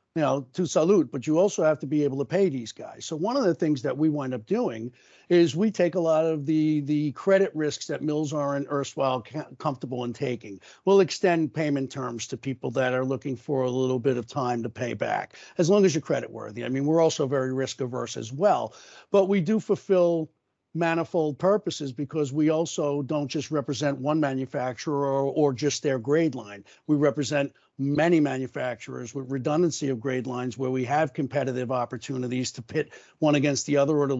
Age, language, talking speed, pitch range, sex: 60-79, English, 205 wpm, 135-165 Hz, male